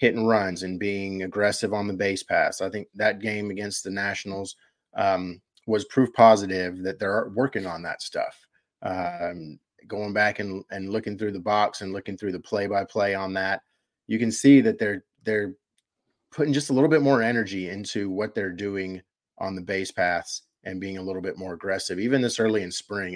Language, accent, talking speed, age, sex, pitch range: English, American, 195 wpm, 30-49, male, 95-110 Hz